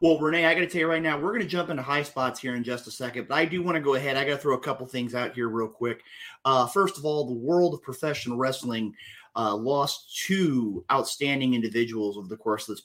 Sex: male